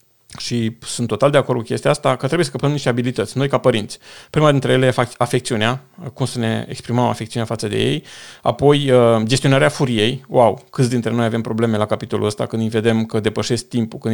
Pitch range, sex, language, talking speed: 115-135 Hz, male, Romanian, 210 wpm